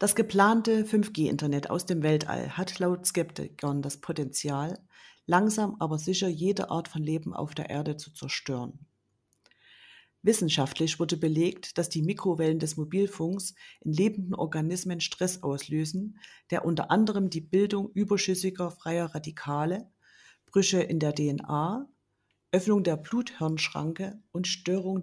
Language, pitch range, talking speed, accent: German, 155-195 Hz, 125 wpm, German